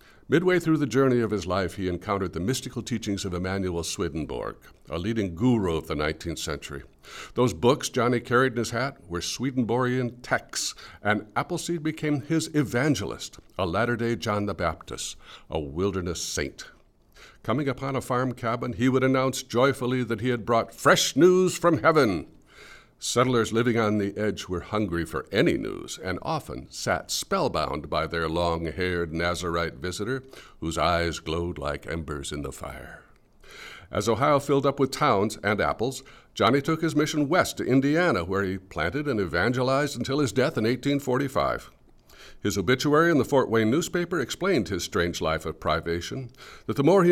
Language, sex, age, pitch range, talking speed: English, male, 60-79, 85-130 Hz, 165 wpm